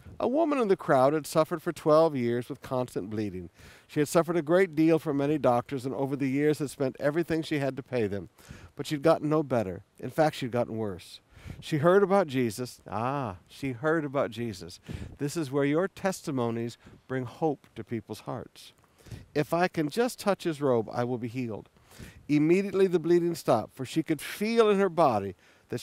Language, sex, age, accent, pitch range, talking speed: English, male, 60-79, American, 120-170 Hz, 205 wpm